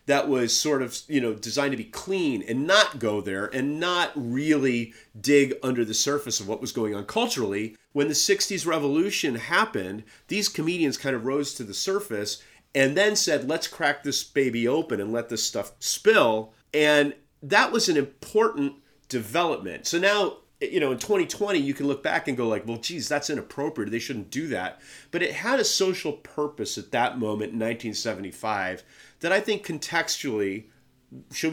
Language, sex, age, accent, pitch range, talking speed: English, male, 40-59, American, 110-160 Hz, 185 wpm